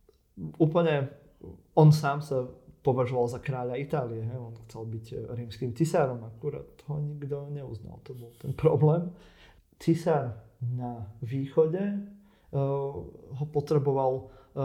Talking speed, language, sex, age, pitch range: 110 wpm, Slovak, male, 30-49, 130-155 Hz